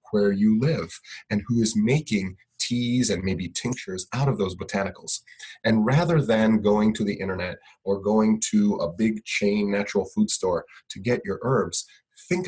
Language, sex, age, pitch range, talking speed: English, male, 30-49, 100-125 Hz, 175 wpm